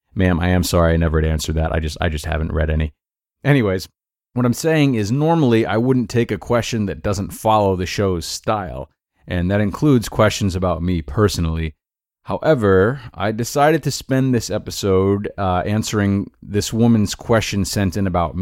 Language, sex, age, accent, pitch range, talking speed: English, male, 30-49, American, 90-115 Hz, 175 wpm